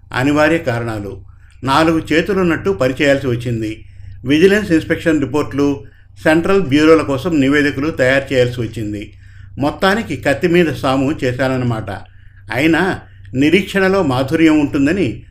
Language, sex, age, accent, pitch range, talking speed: Telugu, male, 50-69, native, 115-155 Hz, 95 wpm